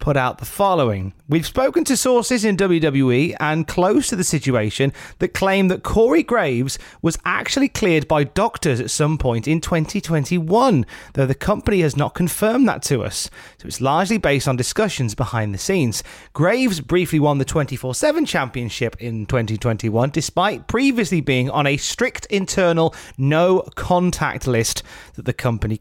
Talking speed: 160 wpm